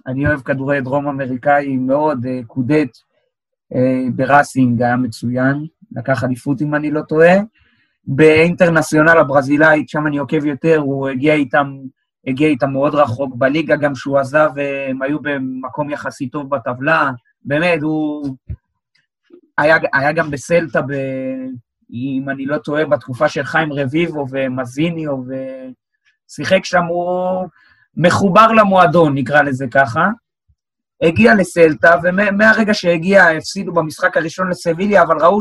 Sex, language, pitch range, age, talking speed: male, Hebrew, 135-170 Hz, 30-49, 125 wpm